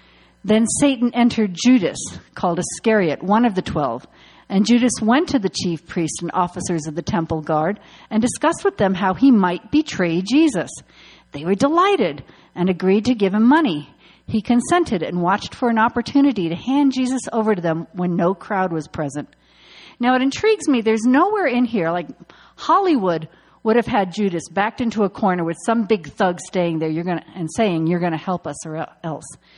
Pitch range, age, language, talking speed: 170-245 Hz, 50-69, English, 195 wpm